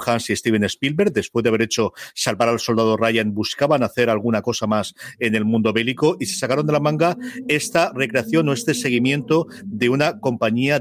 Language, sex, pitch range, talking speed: Spanish, male, 110-130 Hz, 195 wpm